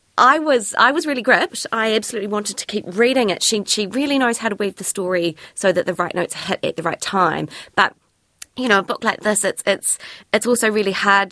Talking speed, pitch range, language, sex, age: 240 wpm, 160-205 Hz, English, female, 20-39